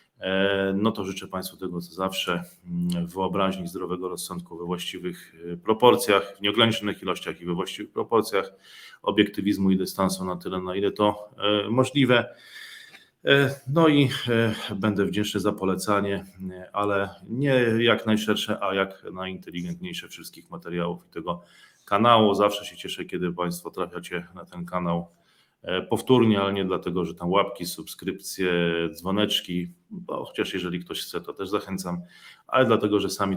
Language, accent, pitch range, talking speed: Polish, native, 85-105 Hz, 140 wpm